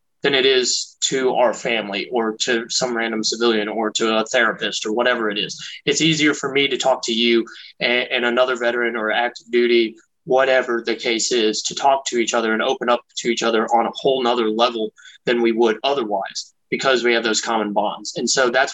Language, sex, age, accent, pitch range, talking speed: English, male, 20-39, American, 115-150 Hz, 215 wpm